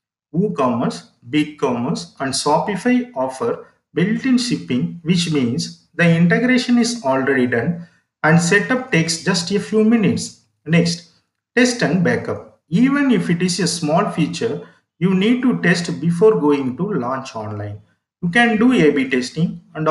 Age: 50-69